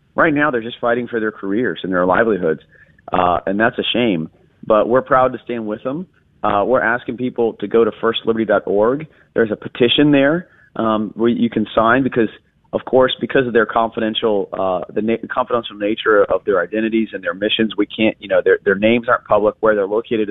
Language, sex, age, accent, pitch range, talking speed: English, male, 30-49, American, 105-130 Hz, 205 wpm